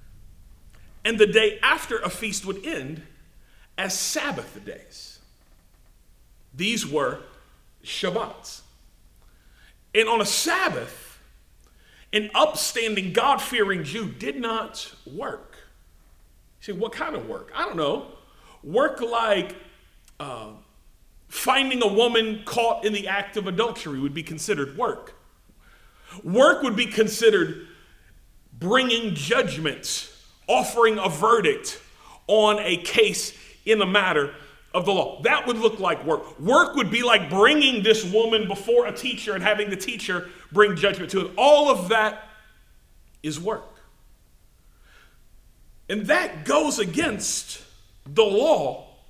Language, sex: English, male